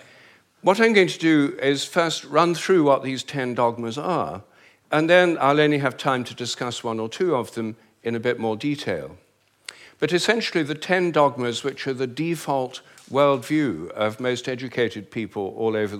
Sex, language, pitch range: male, English, 115-145 Hz